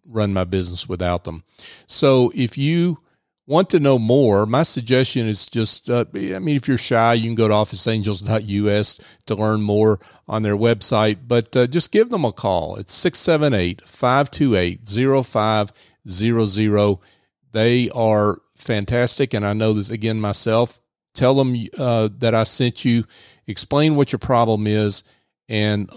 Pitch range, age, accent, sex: 105-125 Hz, 40-59, American, male